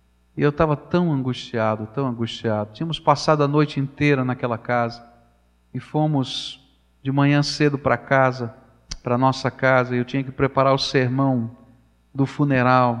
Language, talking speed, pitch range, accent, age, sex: Portuguese, 150 wpm, 120-165 Hz, Brazilian, 40-59, male